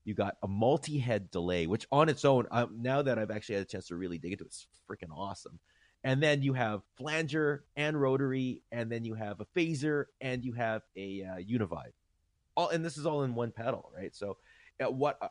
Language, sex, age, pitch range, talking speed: English, male, 30-49, 85-115 Hz, 220 wpm